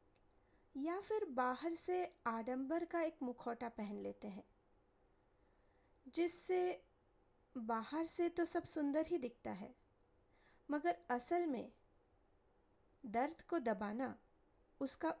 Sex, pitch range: female, 220-325 Hz